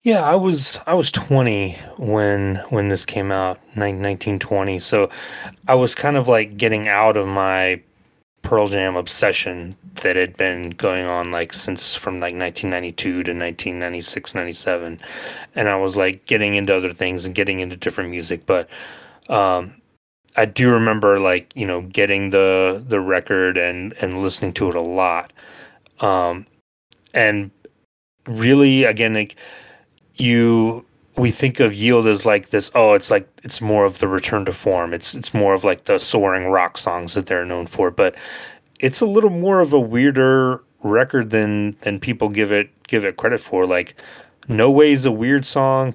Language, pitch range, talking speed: English, 95-120 Hz, 170 wpm